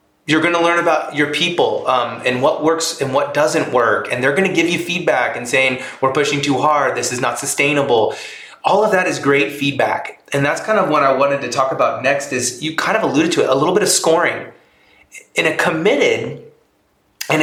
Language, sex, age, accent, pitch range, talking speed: English, male, 30-49, American, 115-165 Hz, 225 wpm